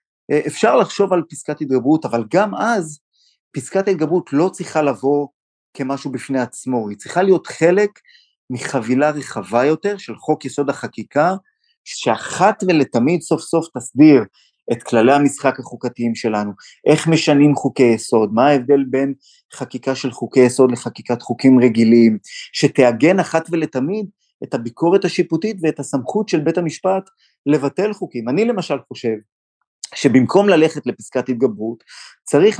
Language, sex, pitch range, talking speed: Hebrew, male, 130-180 Hz, 135 wpm